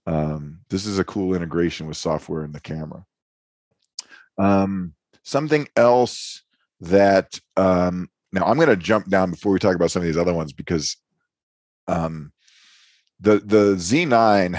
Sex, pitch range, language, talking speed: male, 90-110 Hz, English, 150 wpm